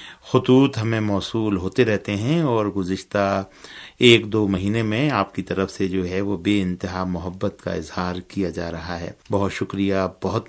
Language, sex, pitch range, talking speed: Urdu, male, 95-120 Hz, 175 wpm